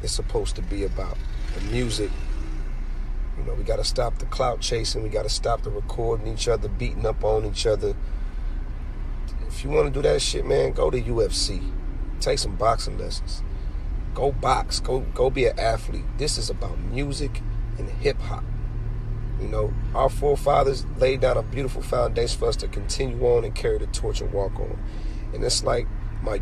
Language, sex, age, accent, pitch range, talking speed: English, male, 40-59, American, 95-125 Hz, 185 wpm